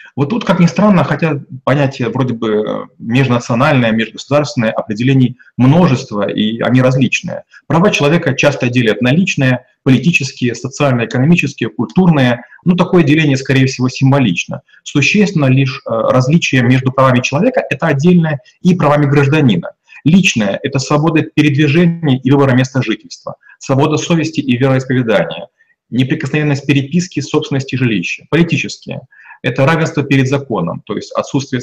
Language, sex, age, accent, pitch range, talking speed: Russian, male, 30-49, native, 125-155 Hz, 125 wpm